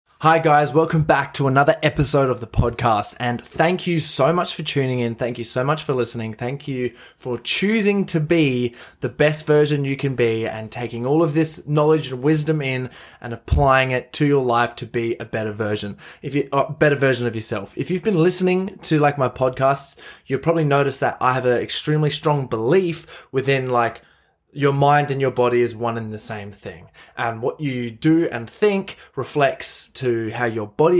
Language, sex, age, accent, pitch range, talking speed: English, male, 20-39, Australian, 120-155 Hz, 205 wpm